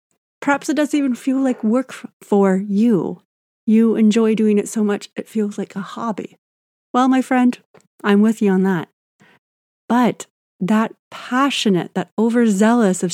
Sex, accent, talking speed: female, American, 155 wpm